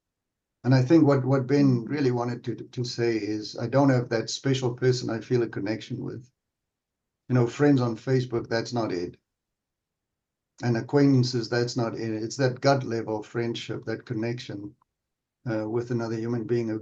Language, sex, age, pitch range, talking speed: English, male, 60-79, 115-135 Hz, 180 wpm